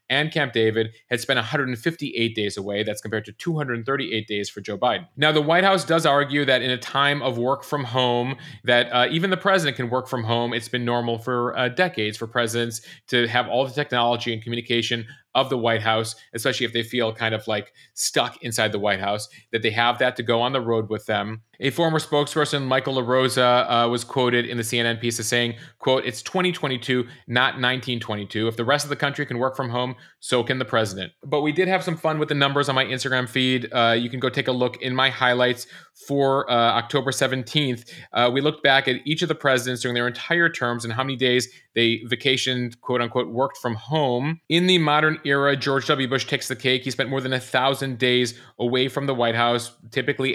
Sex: male